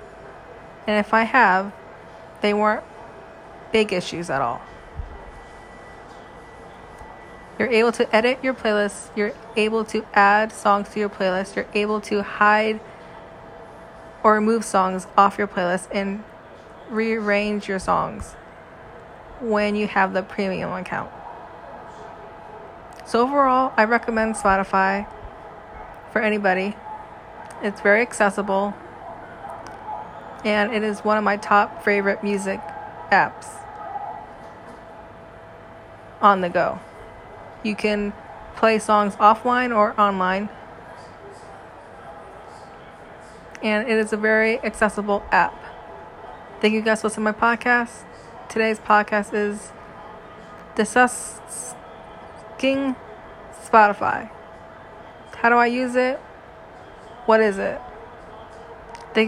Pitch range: 205-225 Hz